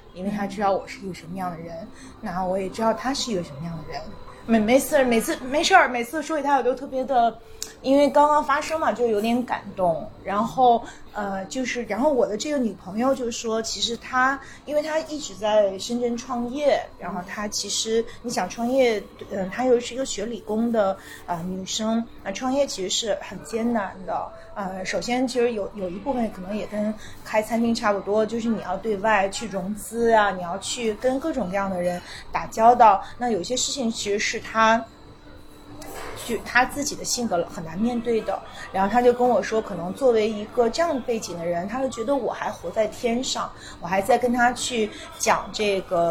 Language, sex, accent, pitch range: Chinese, female, native, 205-255 Hz